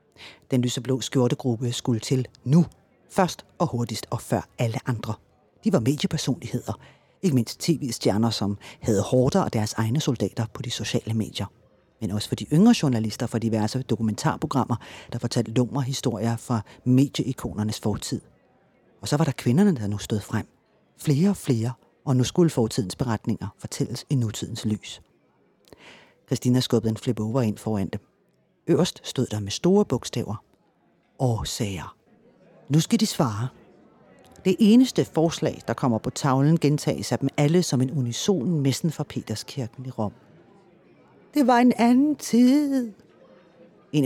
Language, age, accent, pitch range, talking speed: Danish, 30-49, native, 115-155 Hz, 150 wpm